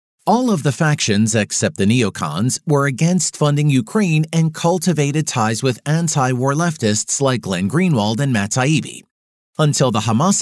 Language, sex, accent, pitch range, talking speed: English, male, American, 115-160 Hz, 150 wpm